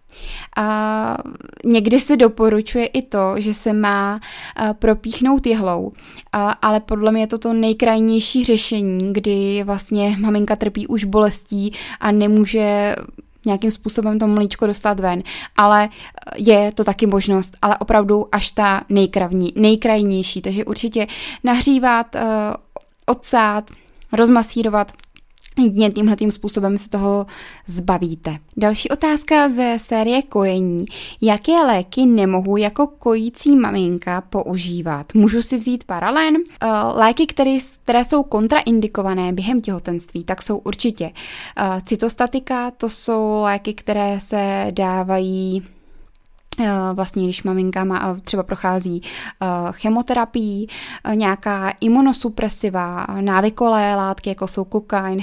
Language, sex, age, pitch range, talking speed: Czech, female, 20-39, 195-230 Hz, 110 wpm